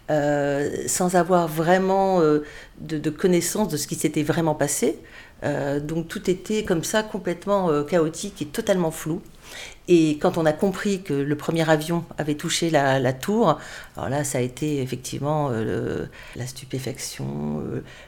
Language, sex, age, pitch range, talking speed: French, female, 50-69, 150-180 Hz, 170 wpm